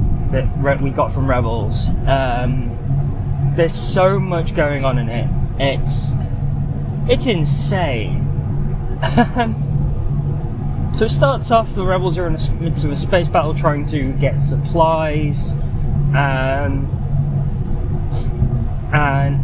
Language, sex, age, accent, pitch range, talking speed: English, male, 10-29, British, 120-150 Hz, 110 wpm